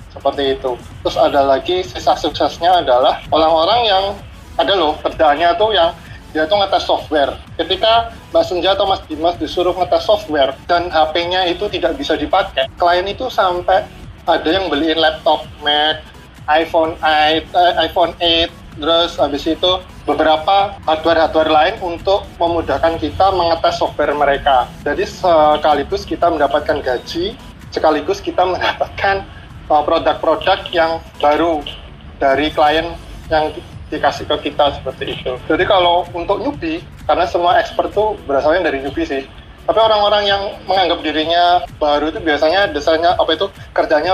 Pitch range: 150-180 Hz